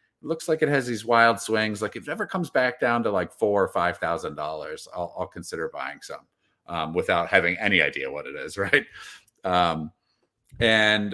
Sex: male